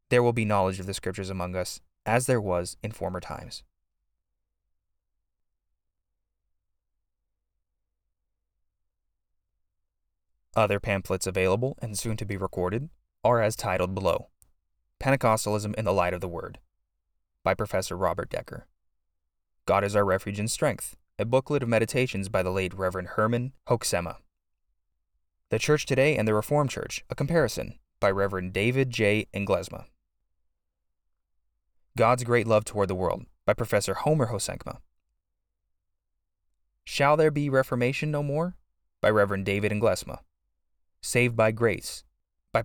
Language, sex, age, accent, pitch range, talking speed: English, male, 20-39, American, 85-110 Hz, 130 wpm